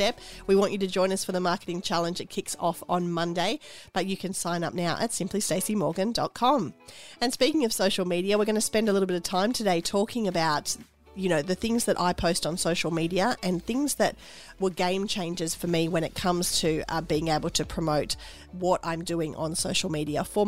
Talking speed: 215 wpm